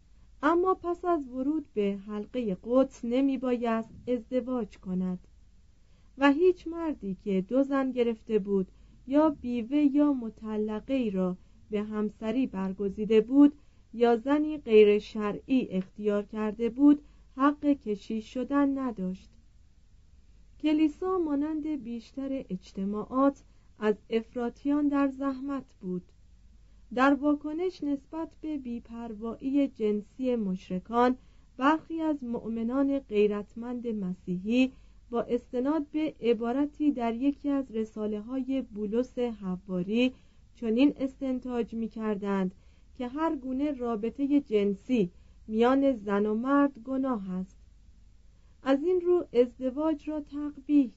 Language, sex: Persian, female